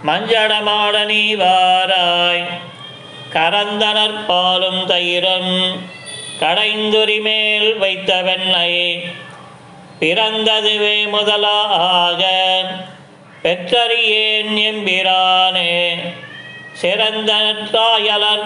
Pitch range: 180-215 Hz